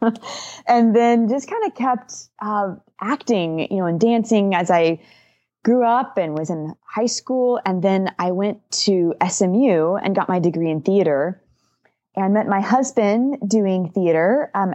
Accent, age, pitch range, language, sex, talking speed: American, 20-39, 170-220 Hz, English, female, 165 wpm